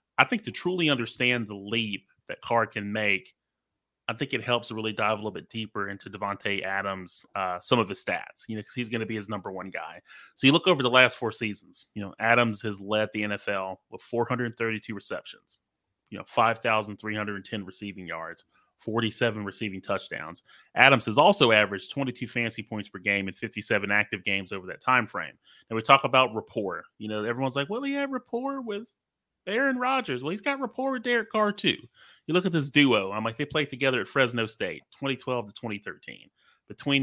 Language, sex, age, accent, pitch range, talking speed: English, male, 30-49, American, 105-125 Hz, 210 wpm